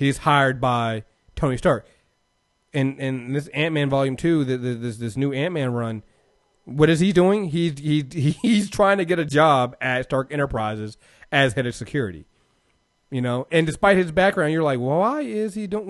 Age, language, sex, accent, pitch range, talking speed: 30-49, English, male, American, 115-150 Hz, 190 wpm